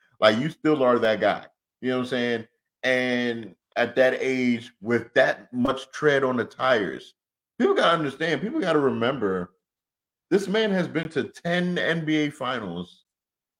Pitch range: 115-150 Hz